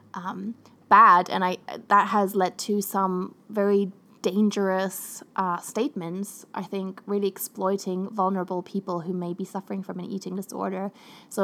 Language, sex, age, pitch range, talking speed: English, female, 20-39, 185-210 Hz, 145 wpm